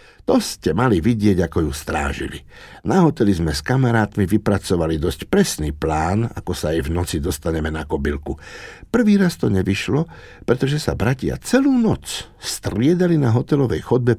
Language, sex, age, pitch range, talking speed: Slovak, male, 60-79, 80-125 Hz, 155 wpm